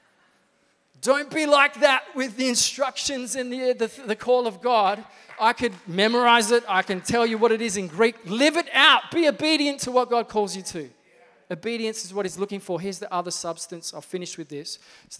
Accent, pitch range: Australian, 160-200 Hz